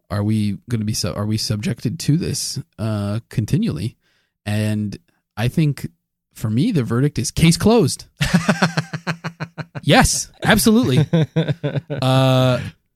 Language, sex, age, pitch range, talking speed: English, male, 20-39, 105-140 Hz, 115 wpm